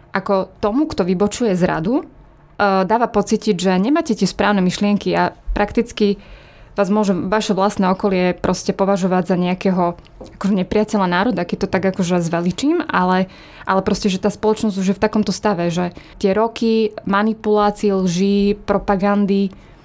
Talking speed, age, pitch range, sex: 155 wpm, 20-39, 195-215 Hz, female